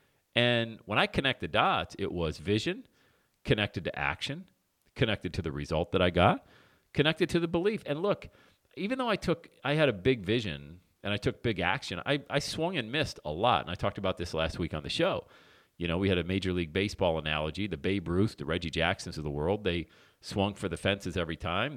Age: 40-59